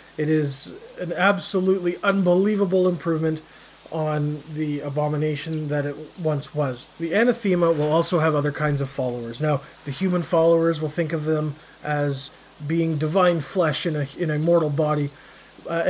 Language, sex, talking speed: English, male, 155 wpm